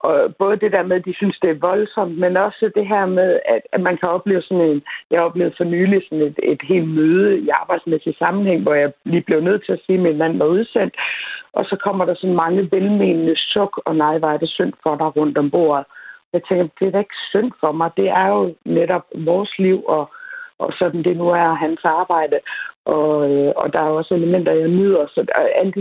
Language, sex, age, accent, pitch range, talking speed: Danish, female, 60-79, native, 160-195 Hz, 230 wpm